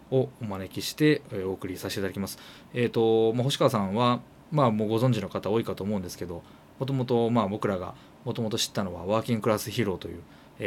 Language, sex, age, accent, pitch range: Japanese, male, 20-39, native, 95-125 Hz